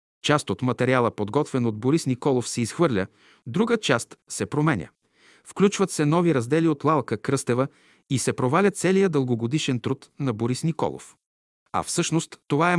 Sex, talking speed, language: male, 155 wpm, Bulgarian